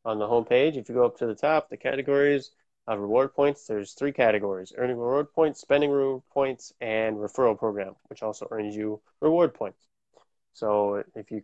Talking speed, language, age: 195 wpm, English, 20-39